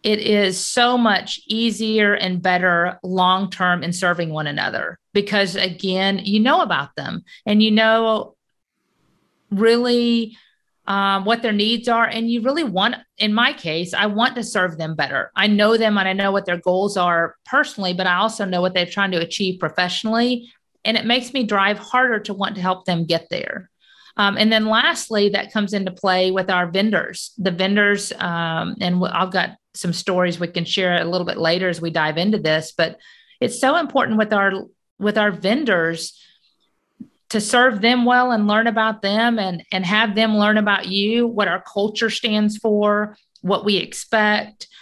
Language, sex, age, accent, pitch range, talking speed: English, female, 40-59, American, 185-225 Hz, 185 wpm